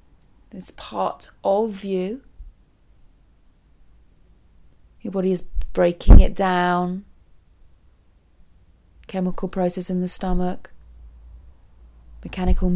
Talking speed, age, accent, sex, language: 75 wpm, 30-49, British, female, English